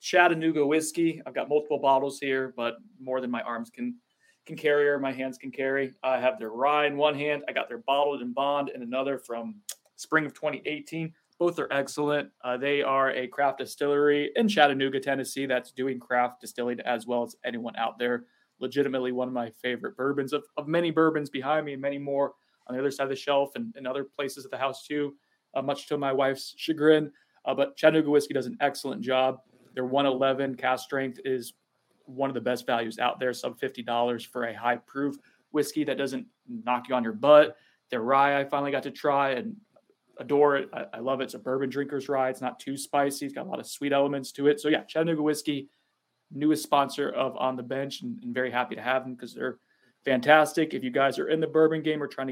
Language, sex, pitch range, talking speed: English, male, 130-150 Hz, 220 wpm